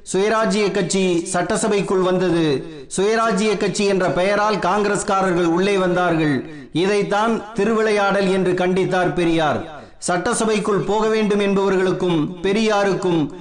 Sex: male